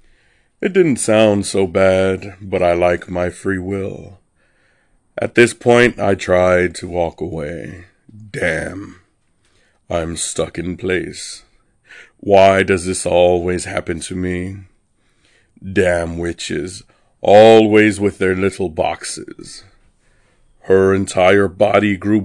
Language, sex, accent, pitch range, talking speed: English, male, American, 90-100 Hz, 115 wpm